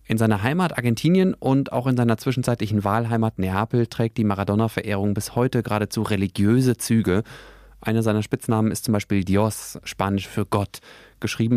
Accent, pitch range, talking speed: German, 100-120 Hz, 155 wpm